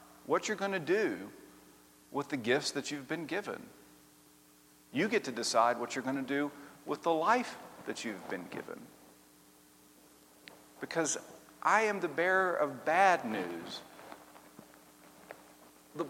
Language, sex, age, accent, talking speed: English, male, 50-69, American, 140 wpm